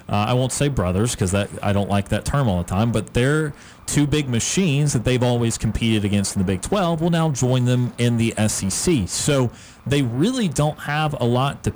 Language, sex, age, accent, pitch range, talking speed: English, male, 40-59, American, 100-125 Hz, 220 wpm